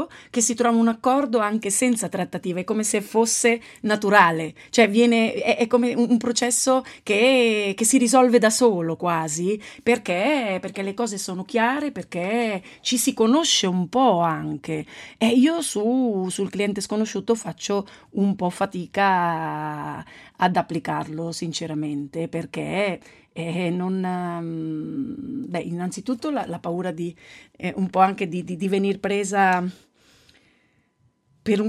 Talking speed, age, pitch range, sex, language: 135 wpm, 30-49, 175-220 Hz, female, Italian